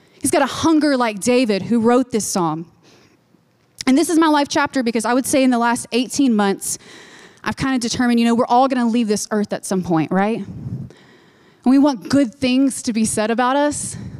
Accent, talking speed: American, 215 wpm